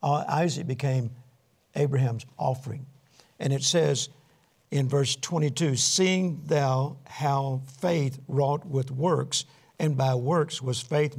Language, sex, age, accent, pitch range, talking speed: English, male, 60-79, American, 135-170 Hz, 125 wpm